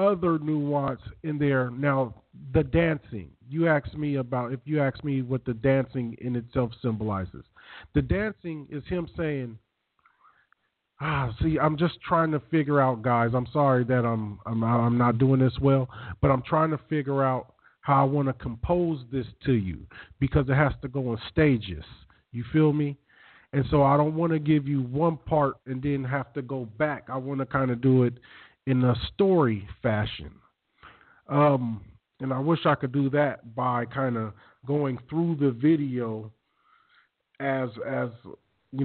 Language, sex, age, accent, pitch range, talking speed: English, male, 40-59, American, 120-150 Hz, 175 wpm